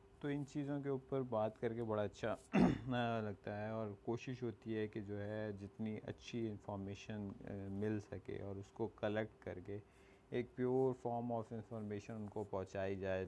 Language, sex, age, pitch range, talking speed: Urdu, male, 30-49, 95-115 Hz, 175 wpm